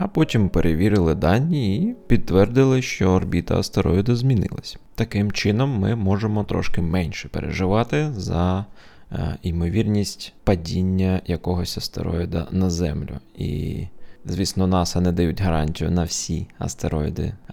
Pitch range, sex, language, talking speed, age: 80-100 Hz, male, Ukrainian, 115 wpm, 20-39